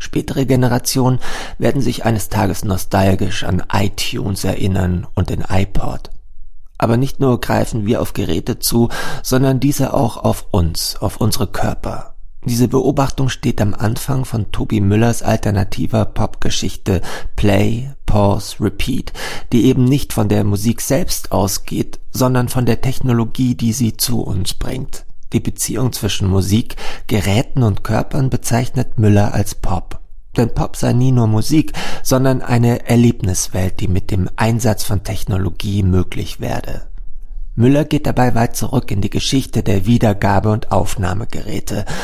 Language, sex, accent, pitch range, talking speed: German, male, German, 100-125 Hz, 140 wpm